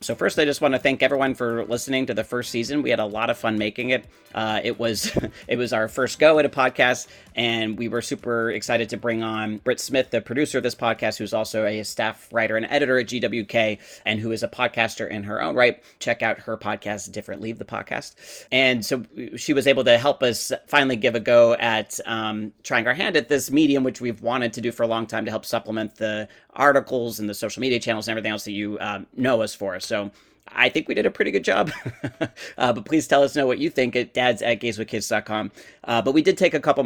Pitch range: 110-125 Hz